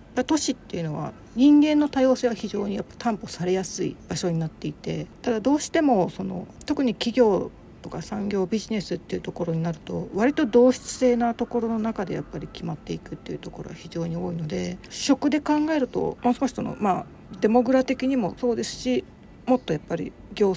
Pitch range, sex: 170-245 Hz, female